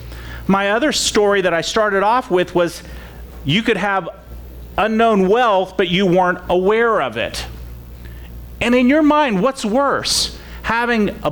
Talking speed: 150 wpm